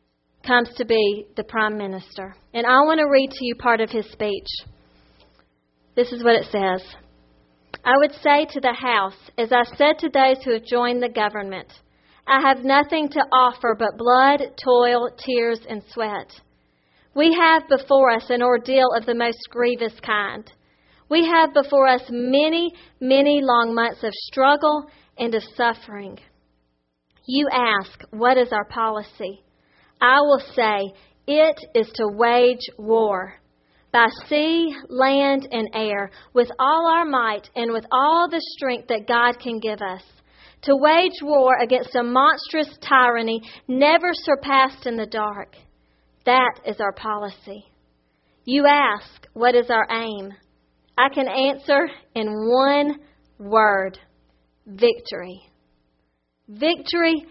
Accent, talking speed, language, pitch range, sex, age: American, 140 wpm, English, 205-270 Hz, female, 40-59